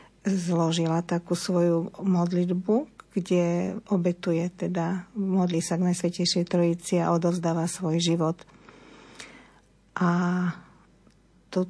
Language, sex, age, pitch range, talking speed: Slovak, female, 50-69, 170-185 Hz, 90 wpm